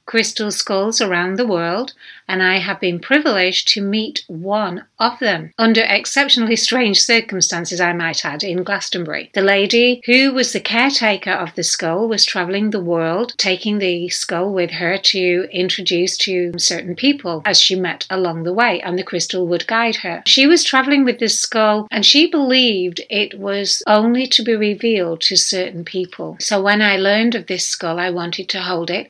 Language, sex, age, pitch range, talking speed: English, female, 60-79, 175-215 Hz, 185 wpm